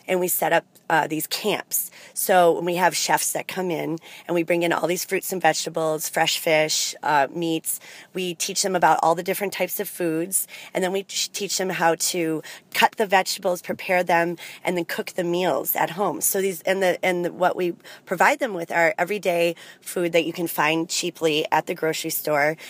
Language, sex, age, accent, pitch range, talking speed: English, female, 30-49, American, 165-190 Hz, 210 wpm